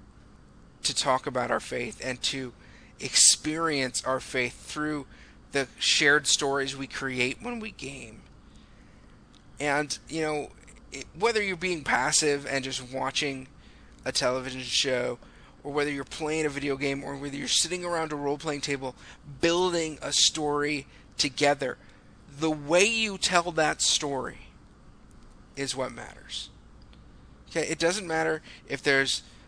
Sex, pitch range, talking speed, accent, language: male, 135-160 Hz, 135 wpm, American, English